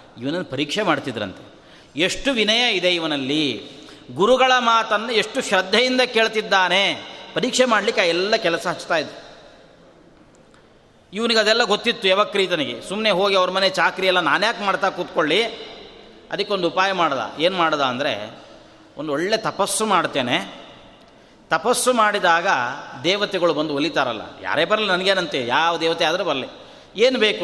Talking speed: 115 wpm